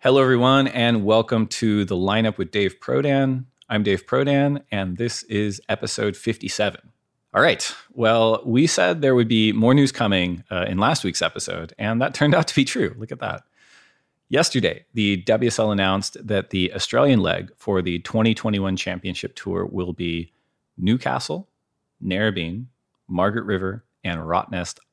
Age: 30-49